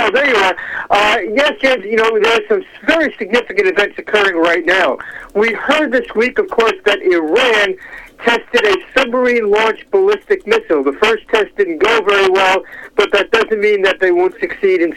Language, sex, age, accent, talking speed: English, male, 60-79, American, 190 wpm